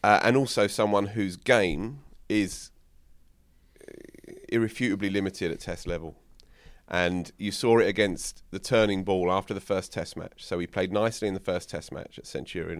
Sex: male